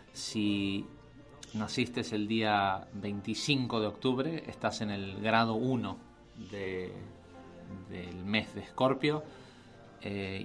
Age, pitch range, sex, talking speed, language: 30-49, 105-120 Hz, male, 110 wpm, Spanish